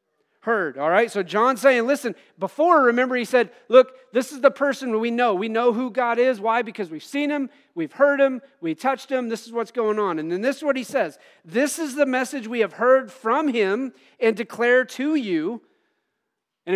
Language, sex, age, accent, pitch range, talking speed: English, male, 40-59, American, 215-270 Hz, 215 wpm